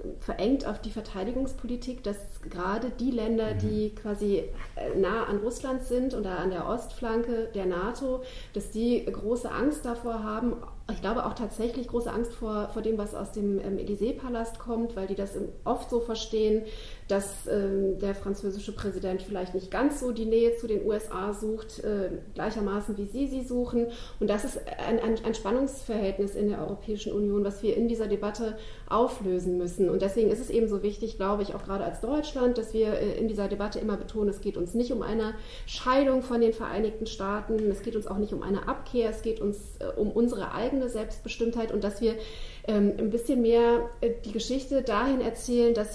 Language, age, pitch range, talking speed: German, 30-49, 205-235 Hz, 190 wpm